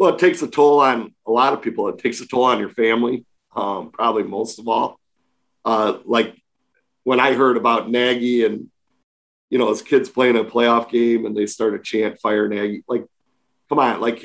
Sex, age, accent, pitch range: male, 40-59, American, 115-130 Hz